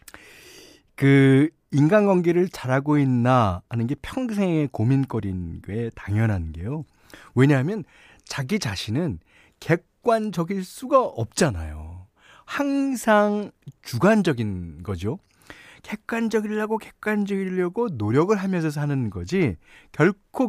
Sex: male